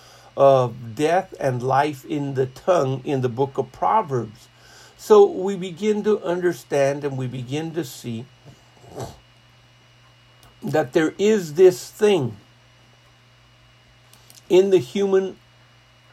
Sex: male